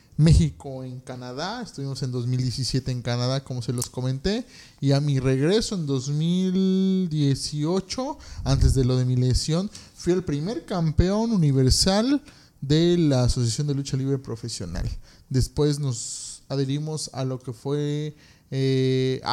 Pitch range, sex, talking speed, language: 130-165 Hz, male, 135 wpm, Spanish